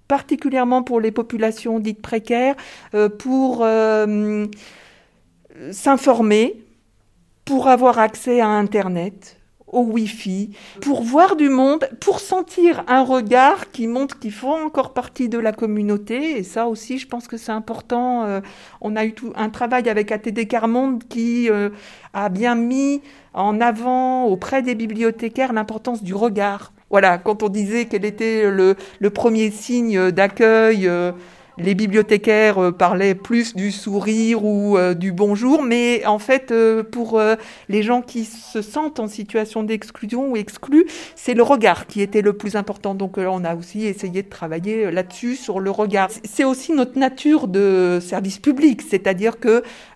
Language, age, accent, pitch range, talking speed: French, 50-69, French, 205-250 Hz, 160 wpm